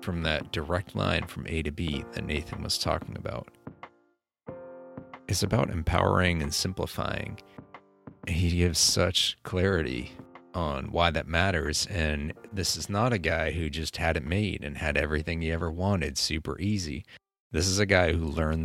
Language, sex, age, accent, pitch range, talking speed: English, male, 40-59, American, 75-95 Hz, 165 wpm